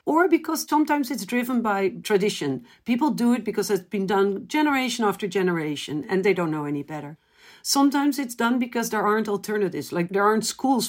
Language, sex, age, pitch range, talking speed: English, female, 50-69, 190-245 Hz, 185 wpm